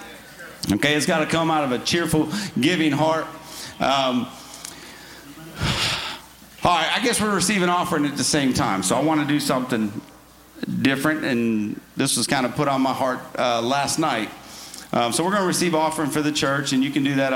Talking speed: 195 wpm